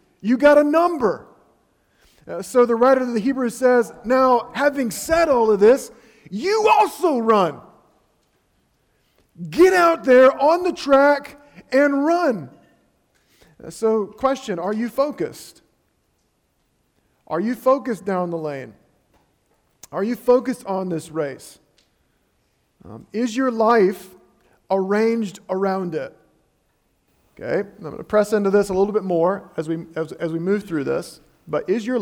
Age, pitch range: 40-59, 165-245 Hz